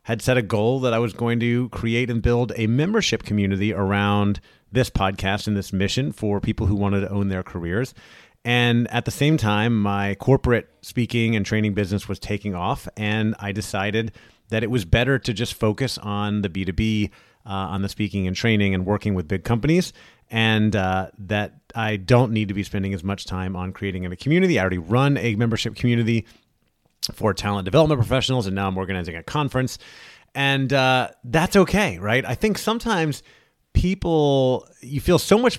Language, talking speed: English, 190 wpm